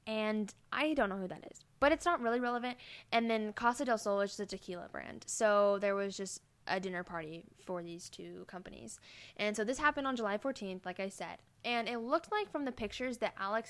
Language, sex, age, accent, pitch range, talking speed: English, female, 10-29, American, 190-245 Hz, 230 wpm